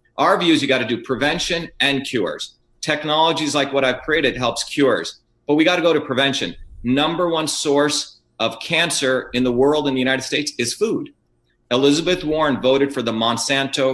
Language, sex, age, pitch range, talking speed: English, male, 40-59, 120-145 Hz, 180 wpm